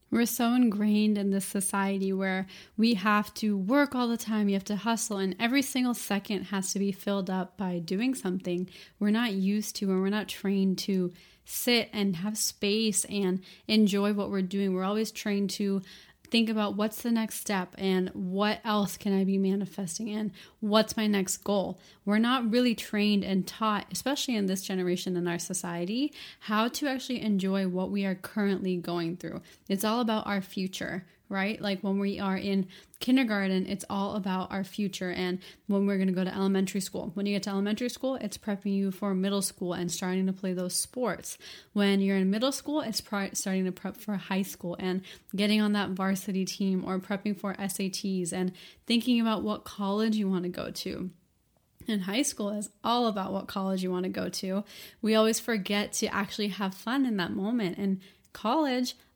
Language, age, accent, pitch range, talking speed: English, 20-39, American, 190-215 Hz, 195 wpm